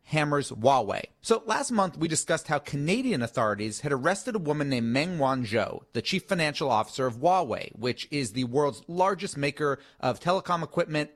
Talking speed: 170 wpm